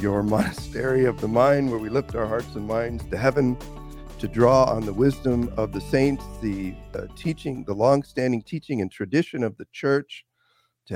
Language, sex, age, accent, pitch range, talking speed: English, male, 50-69, American, 100-125 Hz, 185 wpm